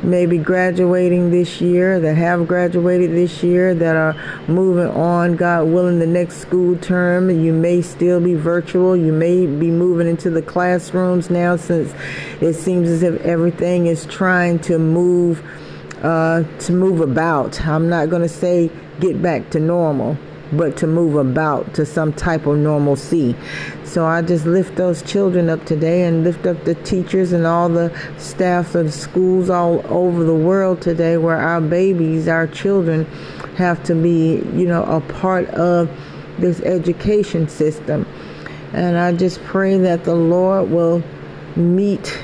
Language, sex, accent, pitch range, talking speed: English, female, American, 165-180 Hz, 160 wpm